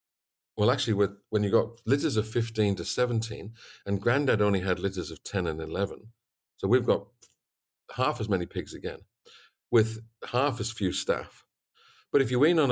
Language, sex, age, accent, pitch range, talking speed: English, male, 50-69, British, 100-125 Hz, 180 wpm